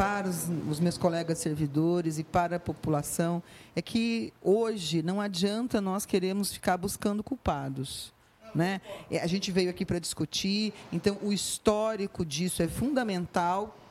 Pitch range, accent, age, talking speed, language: 175-230 Hz, Brazilian, 40-59, 145 wpm, Portuguese